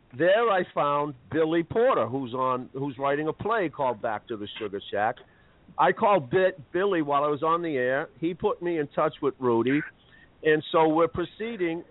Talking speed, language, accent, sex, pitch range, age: 190 wpm, English, American, male, 135-170 Hz, 50-69